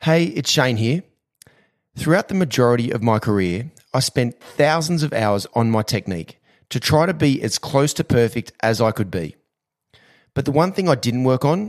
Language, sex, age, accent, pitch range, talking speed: English, male, 30-49, Australian, 110-145 Hz, 195 wpm